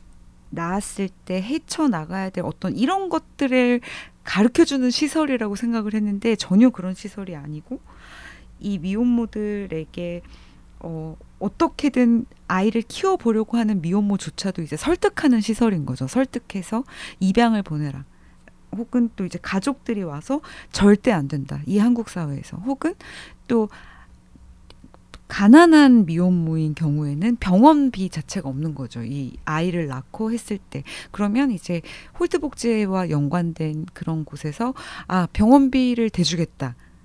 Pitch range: 165-245 Hz